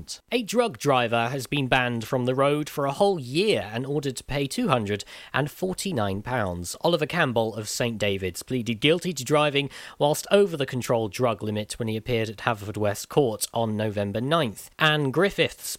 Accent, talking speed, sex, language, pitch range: British, 170 wpm, male, English, 115-145 Hz